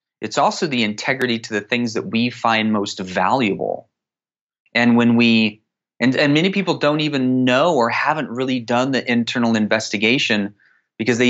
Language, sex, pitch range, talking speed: English, male, 110-130 Hz, 165 wpm